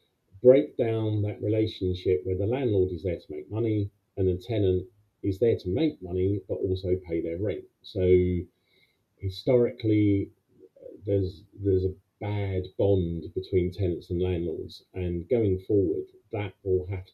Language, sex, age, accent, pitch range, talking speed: English, male, 40-59, British, 90-110 Hz, 145 wpm